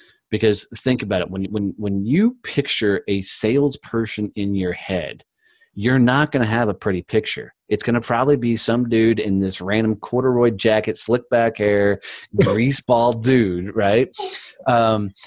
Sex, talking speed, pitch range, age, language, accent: male, 160 wpm, 100-125 Hz, 30-49, English, American